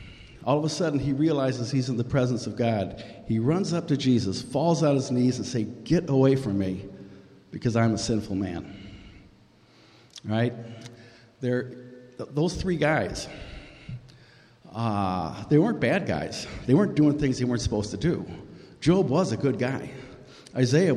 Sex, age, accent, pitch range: male, 50-69, American, 105-135 Hz